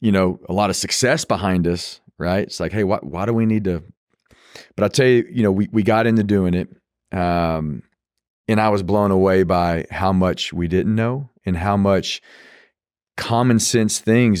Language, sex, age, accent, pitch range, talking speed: English, male, 40-59, American, 90-110 Hz, 200 wpm